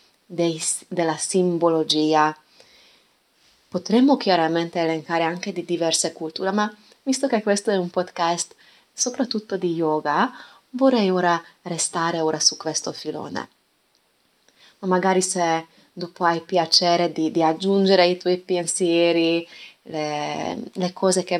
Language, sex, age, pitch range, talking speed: Italian, female, 20-39, 160-195 Hz, 115 wpm